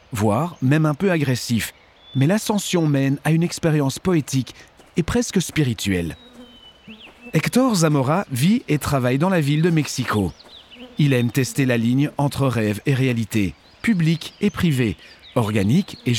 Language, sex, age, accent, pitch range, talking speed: Dutch, male, 40-59, French, 125-175 Hz, 145 wpm